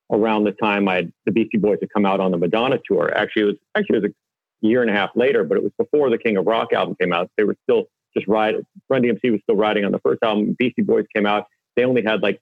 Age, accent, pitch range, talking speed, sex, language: 40-59, American, 105-130 Hz, 290 wpm, male, English